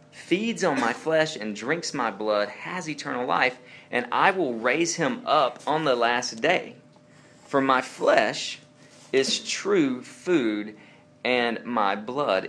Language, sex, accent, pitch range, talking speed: English, male, American, 105-165 Hz, 145 wpm